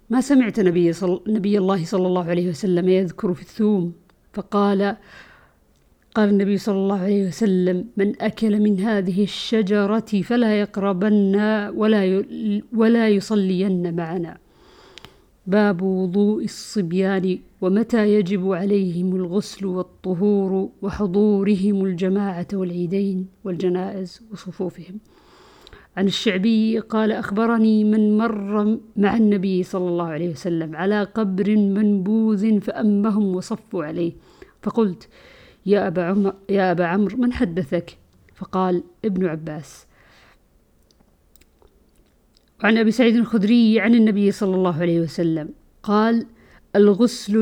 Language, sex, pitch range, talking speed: Arabic, female, 185-215 Hz, 110 wpm